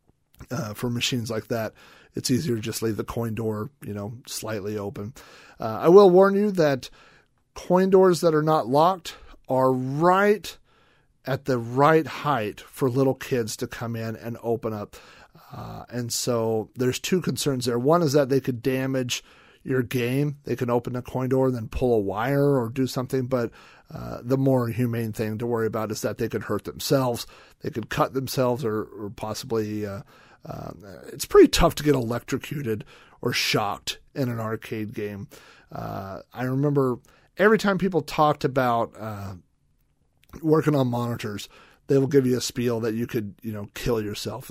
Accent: American